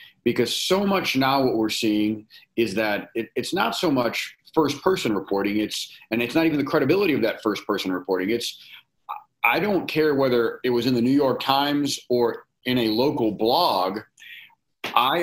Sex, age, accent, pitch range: male, 40-59, American, 110-140 Hz